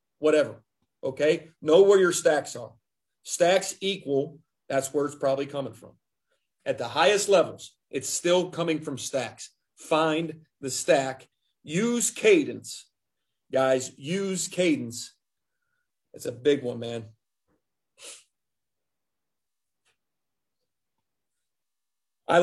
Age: 40-59